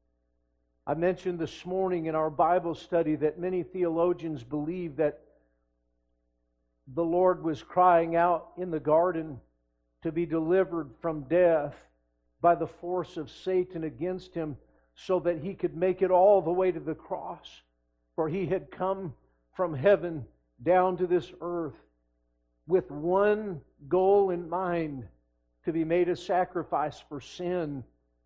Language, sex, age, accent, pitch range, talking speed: English, male, 50-69, American, 140-185 Hz, 140 wpm